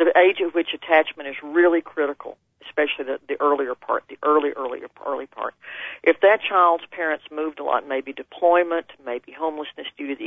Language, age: English, 40-59